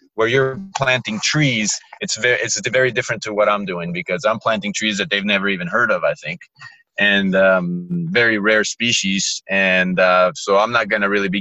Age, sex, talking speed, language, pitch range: 30-49, male, 200 wpm, English, 95-125 Hz